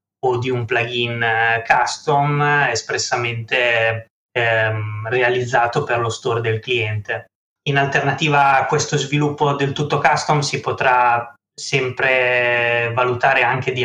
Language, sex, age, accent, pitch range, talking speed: Italian, male, 20-39, native, 115-135 Hz, 115 wpm